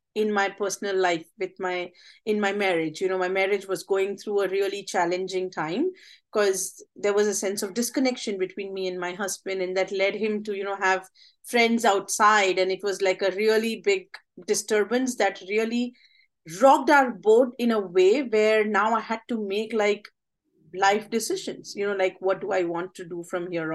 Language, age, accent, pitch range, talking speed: English, 30-49, Indian, 190-230 Hz, 195 wpm